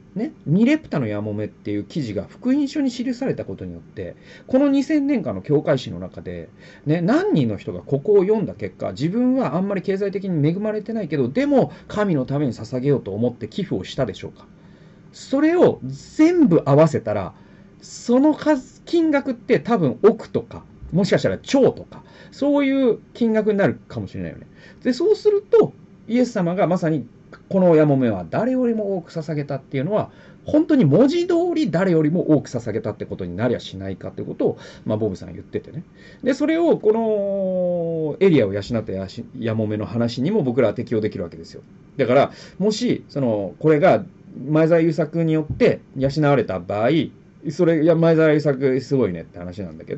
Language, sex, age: Japanese, male, 40-59